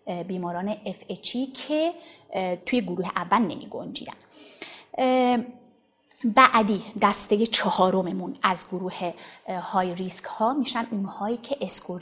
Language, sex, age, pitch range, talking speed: Persian, female, 30-49, 185-255 Hz, 100 wpm